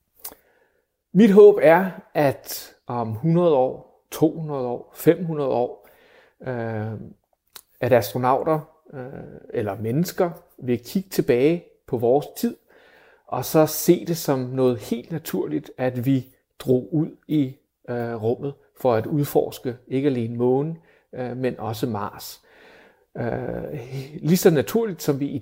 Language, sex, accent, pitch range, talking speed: Danish, male, native, 125-160 Hz, 115 wpm